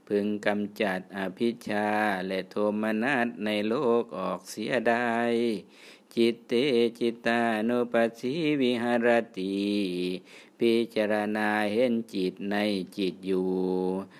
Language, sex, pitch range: Thai, male, 105-120 Hz